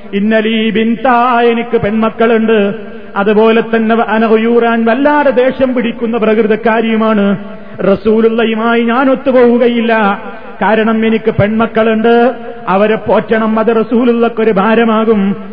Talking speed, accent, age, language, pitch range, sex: 85 wpm, native, 30-49, Malayalam, 215-235 Hz, male